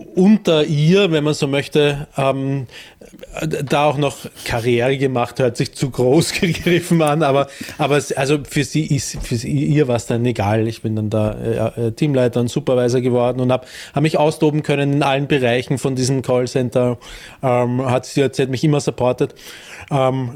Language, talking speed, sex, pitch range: German, 185 wpm, male, 130-155 Hz